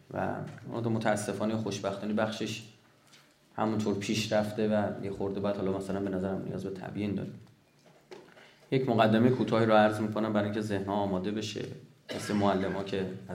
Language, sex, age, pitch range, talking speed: Persian, male, 30-49, 100-110 Hz, 155 wpm